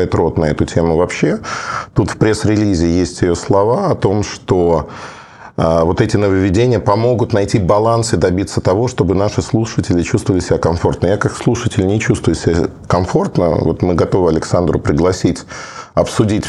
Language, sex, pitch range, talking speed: Russian, male, 100-125 Hz, 155 wpm